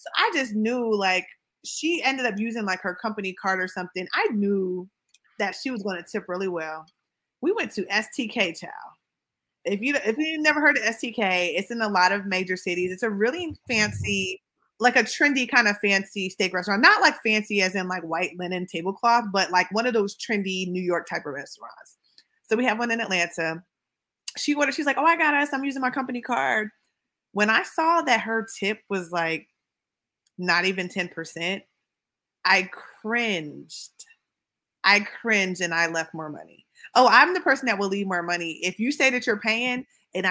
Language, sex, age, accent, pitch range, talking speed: English, female, 20-39, American, 185-265 Hz, 200 wpm